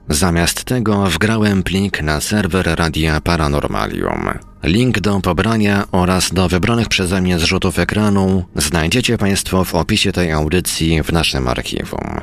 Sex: male